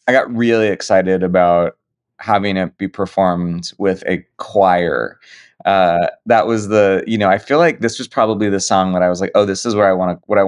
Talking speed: 225 wpm